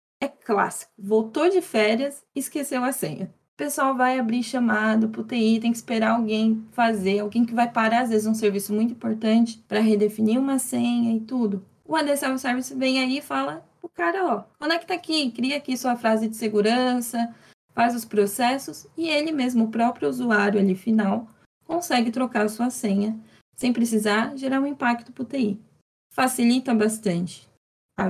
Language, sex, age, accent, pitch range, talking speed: Portuguese, female, 20-39, Brazilian, 210-255 Hz, 185 wpm